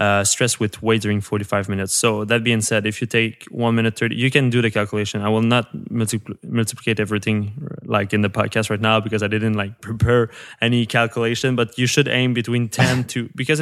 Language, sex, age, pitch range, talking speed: English, male, 20-39, 105-125 Hz, 220 wpm